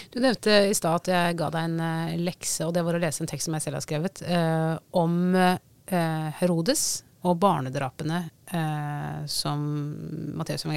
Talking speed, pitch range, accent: 175 wpm, 150-175 Hz, Swedish